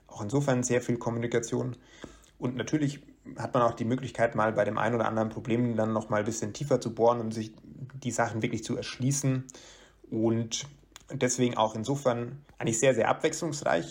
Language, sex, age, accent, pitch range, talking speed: English, male, 30-49, German, 110-130 Hz, 180 wpm